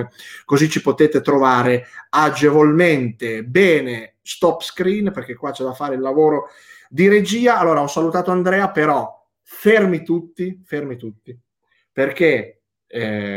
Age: 30-49